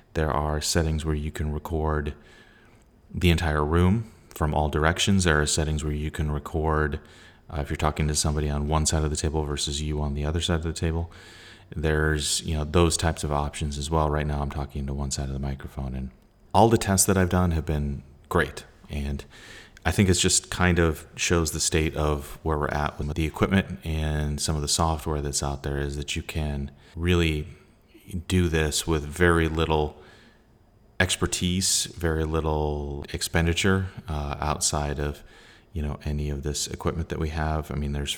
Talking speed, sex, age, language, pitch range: 195 wpm, male, 30-49, English, 75-85 Hz